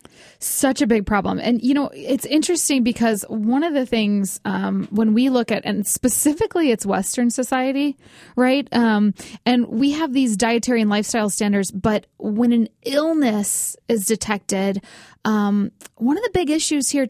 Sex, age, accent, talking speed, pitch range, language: female, 20-39, American, 165 wpm, 210-255 Hz, English